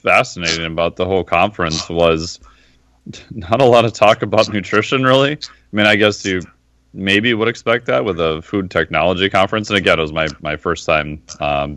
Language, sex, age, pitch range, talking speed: English, male, 30-49, 80-100 Hz, 190 wpm